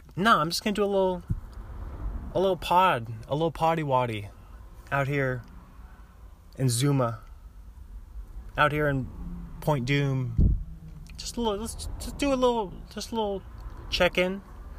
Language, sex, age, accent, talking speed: English, male, 20-39, American, 150 wpm